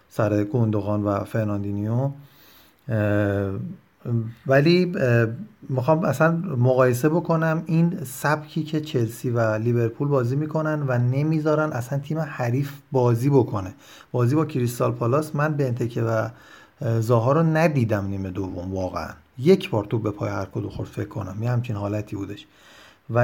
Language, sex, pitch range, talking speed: Persian, male, 110-150 Hz, 135 wpm